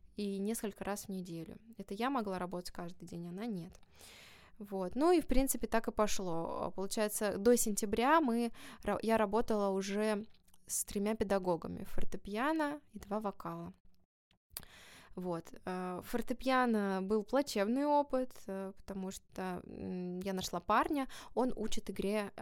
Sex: female